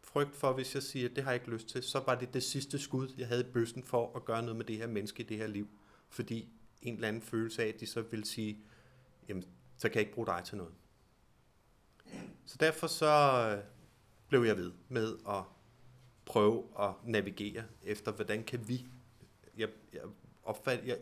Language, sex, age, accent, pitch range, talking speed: Danish, male, 30-49, native, 105-130 Hz, 205 wpm